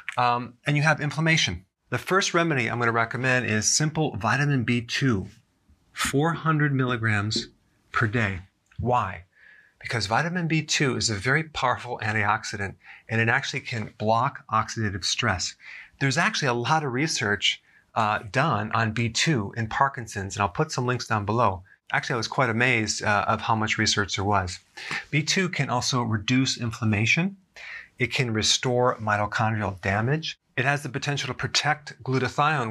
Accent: American